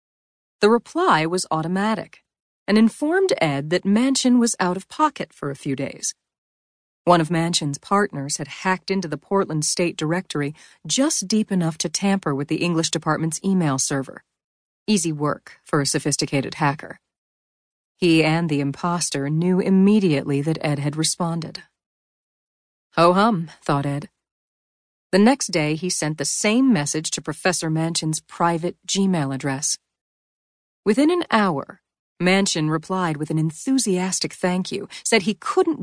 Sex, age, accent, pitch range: female, 40-59, American, 150-195 Hz